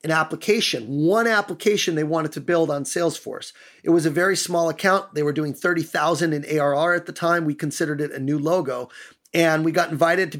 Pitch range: 155-195 Hz